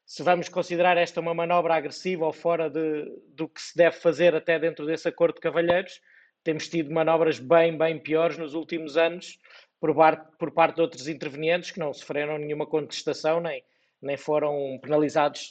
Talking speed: 180 wpm